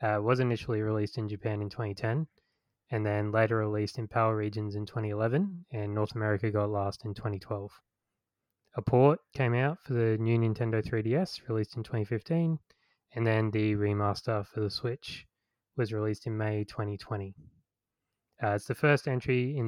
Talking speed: 165 wpm